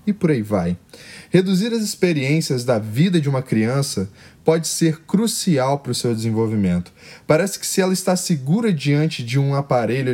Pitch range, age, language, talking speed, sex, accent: 125-180 Hz, 10-29, Portuguese, 170 wpm, male, Brazilian